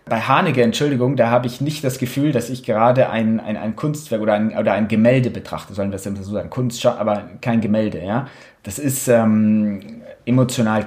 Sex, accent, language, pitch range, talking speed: male, German, German, 110-135 Hz, 200 wpm